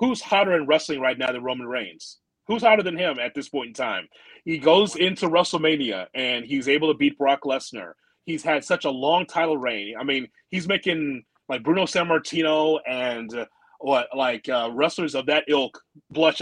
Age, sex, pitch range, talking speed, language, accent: 30-49, male, 135-165 Hz, 195 wpm, English, American